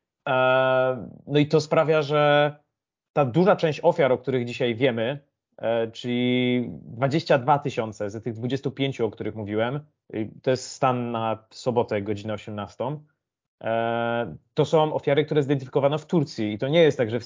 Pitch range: 115-145 Hz